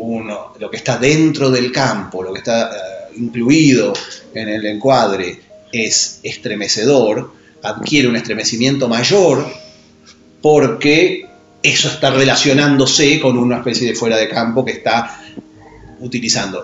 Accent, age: Argentinian, 40-59